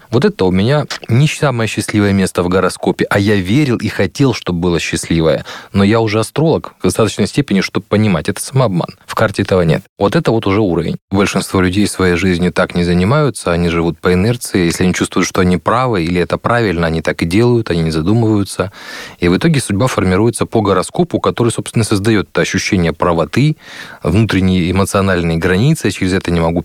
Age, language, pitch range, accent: 30-49, Russian, 90-110 Hz, native